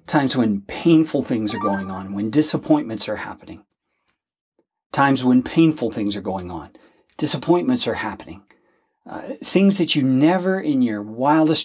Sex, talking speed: male, 150 wpm